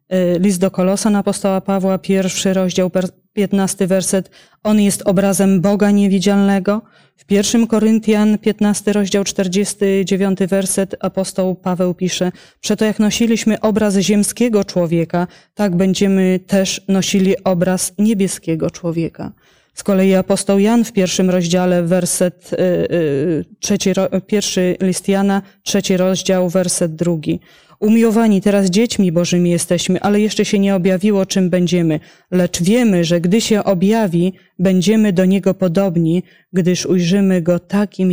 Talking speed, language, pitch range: 130 wpm, Polish, 180-200 Hz